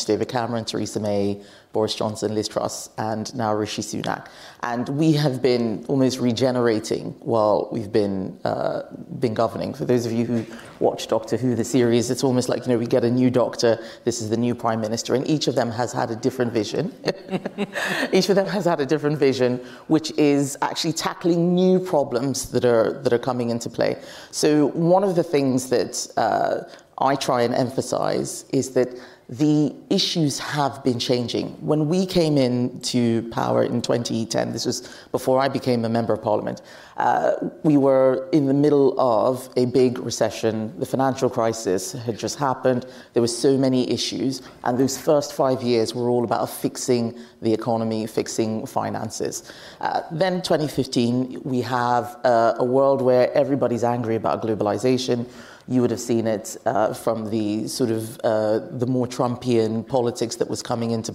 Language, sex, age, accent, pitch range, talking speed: English, female, 30-49, British, 115-135 Hz, 180 wpm